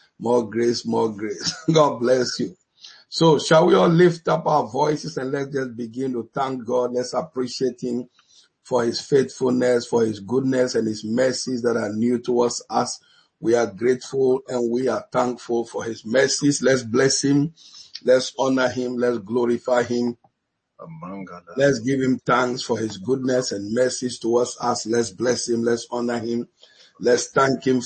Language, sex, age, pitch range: English, male, 50-69, 120-145 Hz